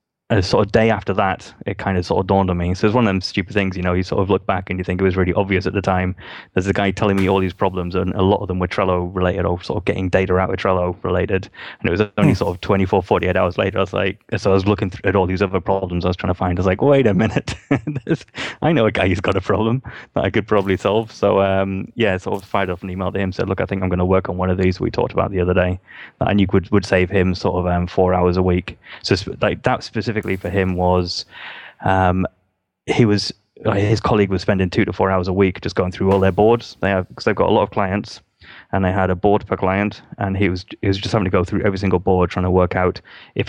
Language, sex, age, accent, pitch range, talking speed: English, male, 20-39, British, 90-100 Hz, 295 wpm